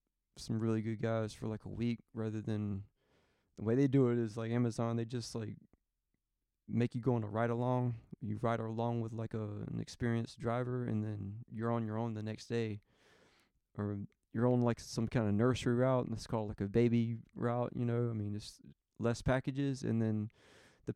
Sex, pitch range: male, 105-120 Hz